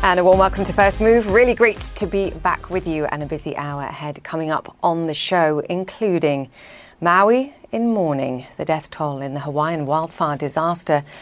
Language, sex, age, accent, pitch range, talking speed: English, female, 40-59, British, 155-200 Hz, 195 wpm